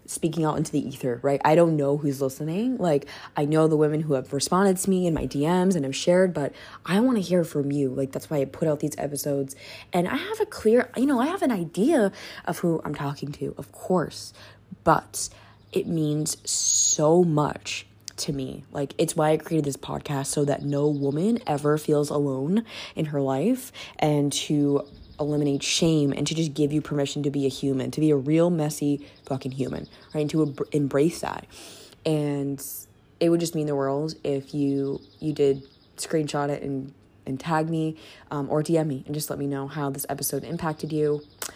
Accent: American